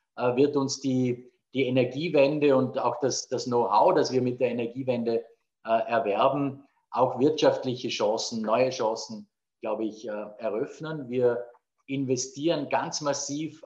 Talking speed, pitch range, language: 130 wpm, 120-135 Hz, German